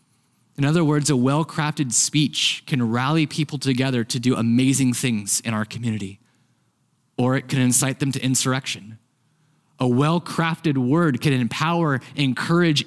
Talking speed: 140 wpm